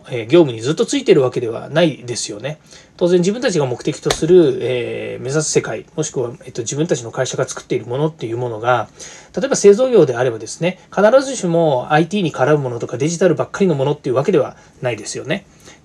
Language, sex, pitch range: Japanese, male, 140-210 Hz